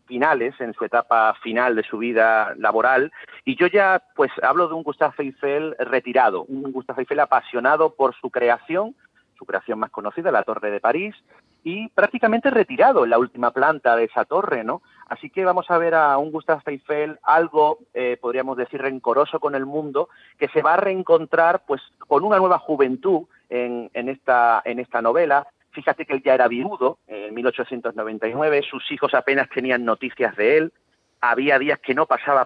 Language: Spanish